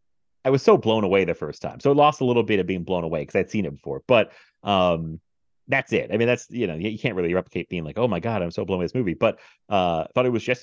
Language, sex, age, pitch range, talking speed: English, male, 30-49, 90-125 Hz, 310 wpm